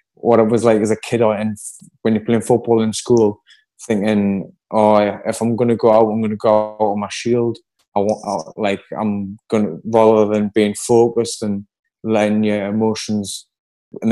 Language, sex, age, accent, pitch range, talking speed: English, male, 20-39, British, 105-115 Hz, 185 wpm